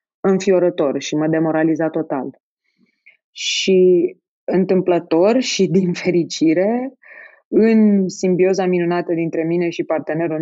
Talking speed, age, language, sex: 100 wpm, 20-39, Romanian, female